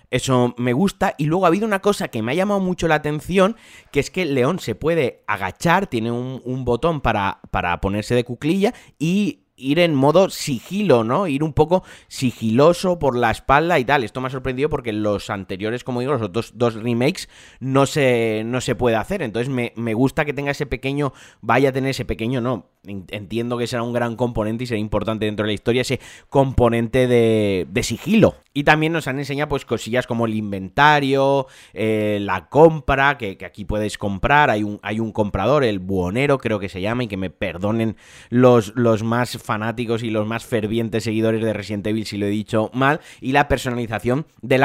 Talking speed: 205 wpm